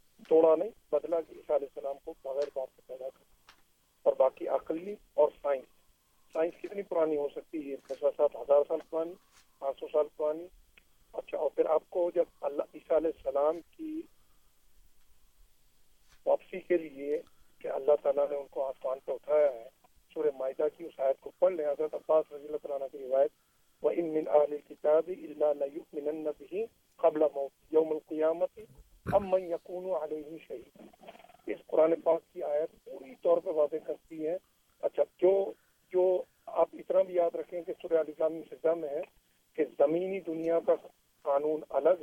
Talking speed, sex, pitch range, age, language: 115 wpm, male, 145-170 Hz, 50-69, Urdu